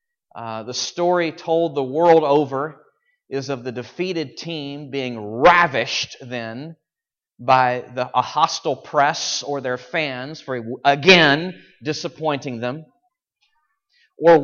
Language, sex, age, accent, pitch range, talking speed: English, male, 30-49, American, 125-155 Hz, 110 wpm